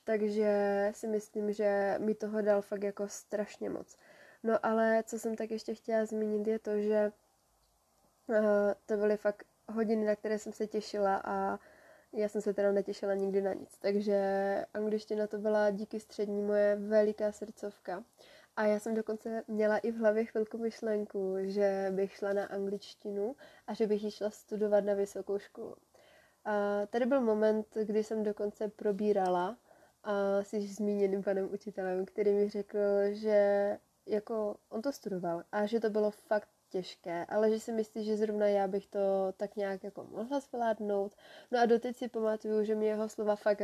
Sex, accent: female, native